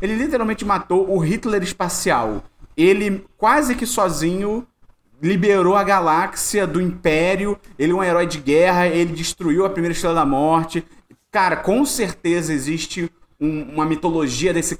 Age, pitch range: 30-49, 165-210 Hz